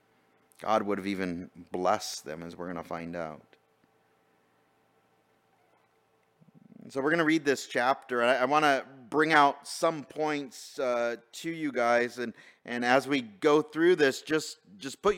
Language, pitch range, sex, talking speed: English, 125-170 Hz, male, 160 wpm